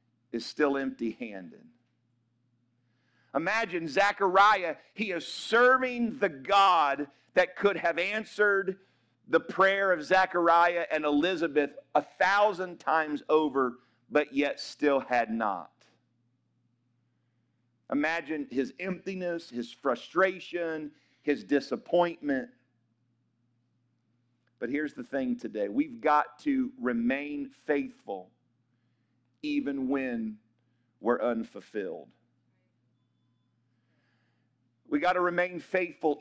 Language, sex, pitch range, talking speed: English, male, 120-195 Hz, 90 wpm